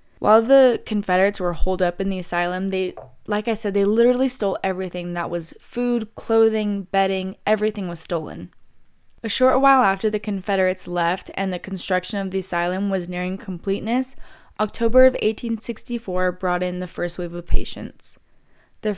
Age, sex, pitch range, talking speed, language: 20-39, female, 185-225 Hz, 165 wpm, English